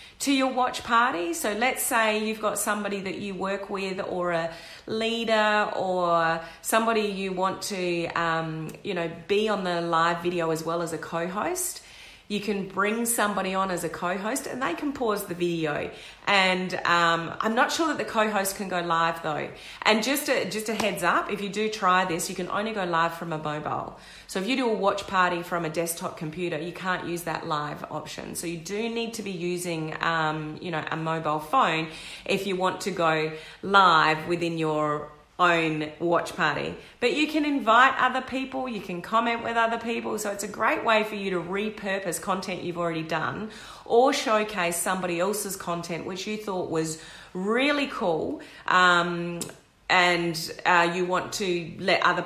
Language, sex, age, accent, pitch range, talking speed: English, female, 30-49, Australian, 170-215 Hz, 190 wpm